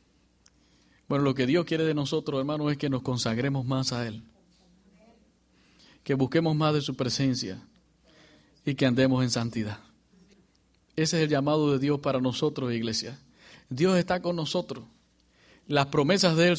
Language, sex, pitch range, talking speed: English, male, 135-175 Hz, 155 wpm